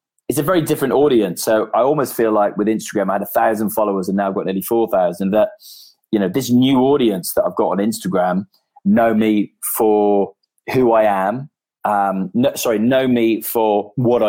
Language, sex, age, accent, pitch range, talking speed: English, male, 20-39, British, 100-130 Hz, 200 wpm